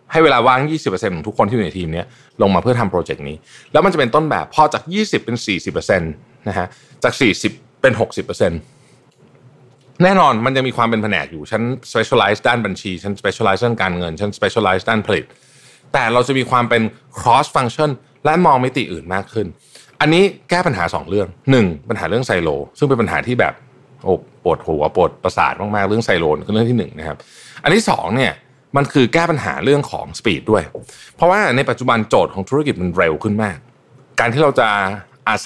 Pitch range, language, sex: 100-140 Hz, Thai, male